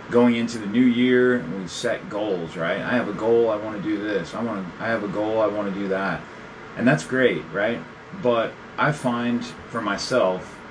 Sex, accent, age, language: male, American, 30-49, English